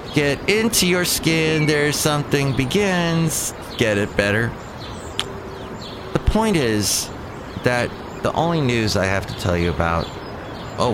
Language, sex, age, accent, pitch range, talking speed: English, male, 30-49, American, 90-135 Hz, 130 wpm